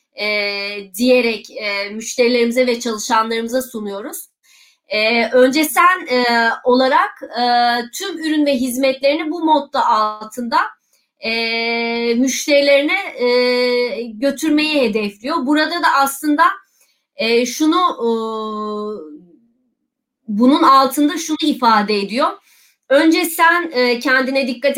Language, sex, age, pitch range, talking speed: Turkish, female, 30-49, 240-305 Hz, 95 wpm